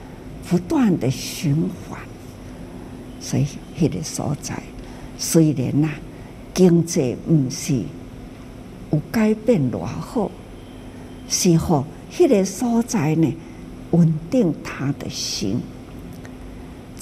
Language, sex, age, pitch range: Chinese, female, 60-79, 145-215 Hz